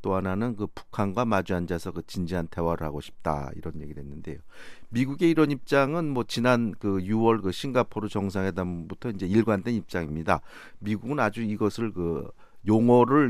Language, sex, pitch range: Korean, male, 90-120 Hz